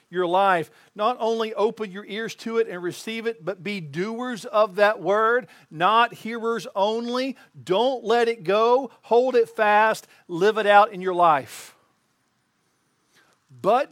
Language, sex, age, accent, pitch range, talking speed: English, male, 50-69, American, 155-225 Hz, 150 wpm